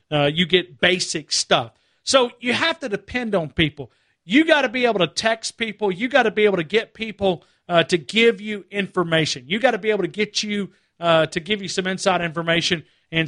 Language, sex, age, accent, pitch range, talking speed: English, male, 50-69, American, 165-225 Hz, 215 wpm